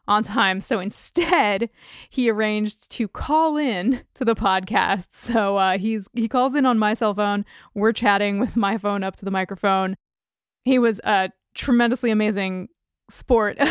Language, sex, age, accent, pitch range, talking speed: English, female, 20-39, American, 200-245 Hz, 160 wpm